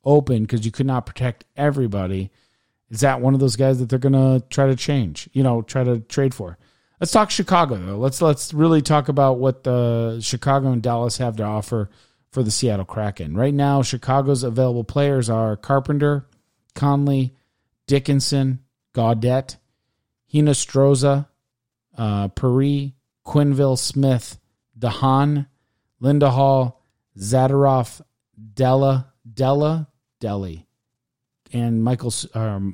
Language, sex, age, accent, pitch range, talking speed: English, male, 40-59, American, 115-140 Hz, 130 wpm